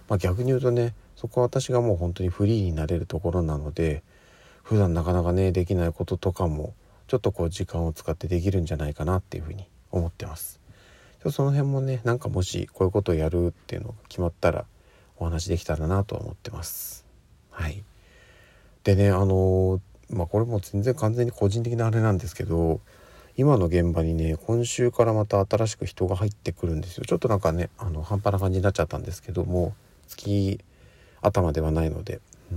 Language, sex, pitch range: Japanese, male, 85-105 Hz